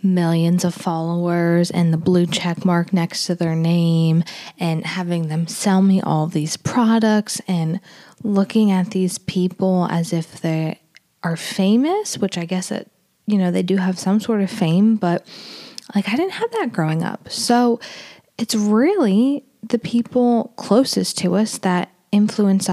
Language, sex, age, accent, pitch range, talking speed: English, female, 20-39, American, 185-240 Hz, 160 wpm